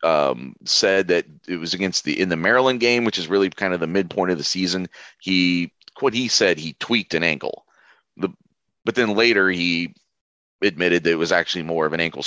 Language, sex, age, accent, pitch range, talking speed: English, male, 30-49, American, 85-105 Hz, 210 wpm